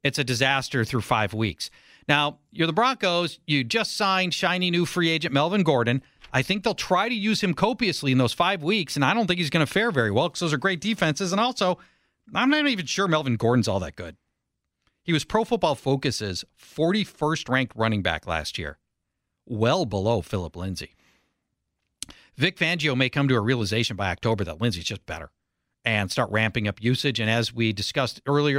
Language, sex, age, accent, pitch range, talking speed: English, male, 40-59, American, 115-190 Hz, 195 wpm